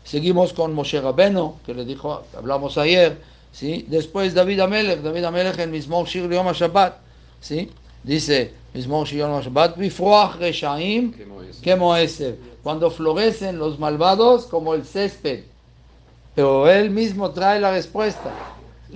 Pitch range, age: 145-195 Hz, 60-79